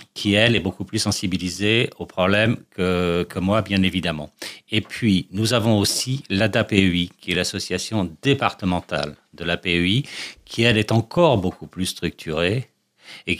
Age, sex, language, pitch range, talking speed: 50-69, male, French, 90-115 Hz, 150 wpm